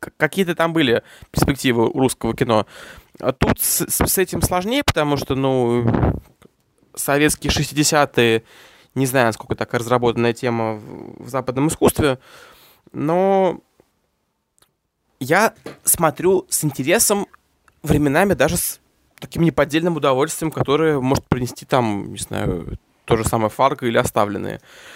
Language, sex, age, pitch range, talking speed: Russian, male, 20-39, 120-150 Hz, 115 wpm